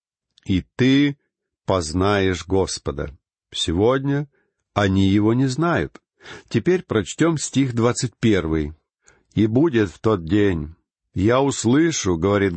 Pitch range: 95-130 Hz